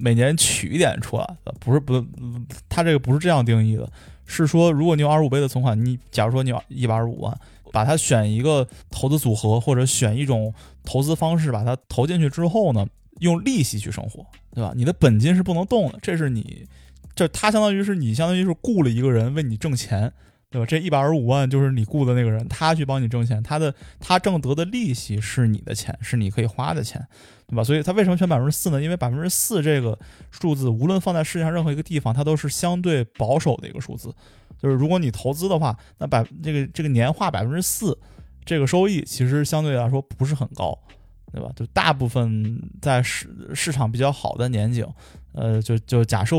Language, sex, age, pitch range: Chinese, male, 20-39, 115-155 Hz